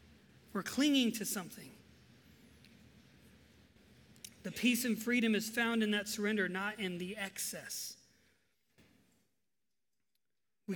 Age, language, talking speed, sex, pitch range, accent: 30-49, English, 100 wpm, male, 190-230 Hz, American